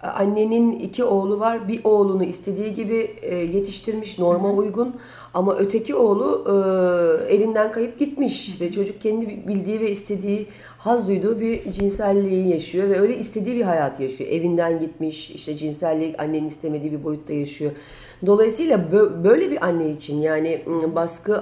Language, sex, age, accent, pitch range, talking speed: Turkish, female, 40-59, native, 160-215 Hz, 140 wpm